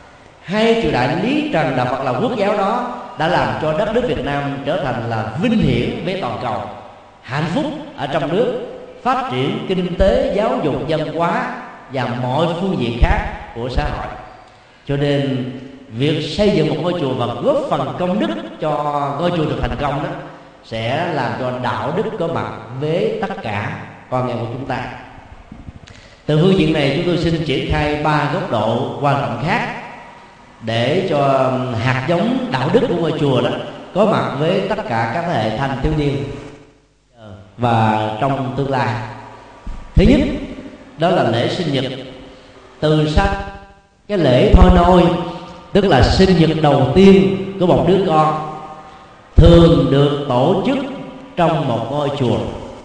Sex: male